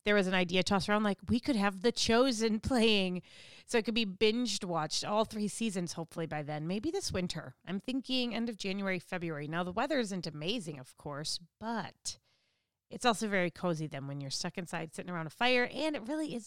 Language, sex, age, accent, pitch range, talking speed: English, female, 30-49, American, 175-230 Hz, 215 wpm